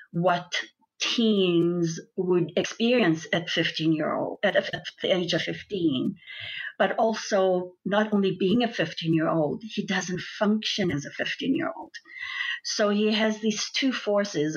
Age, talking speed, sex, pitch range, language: 50-69, 150 wpm, female, 175-220 Hz, English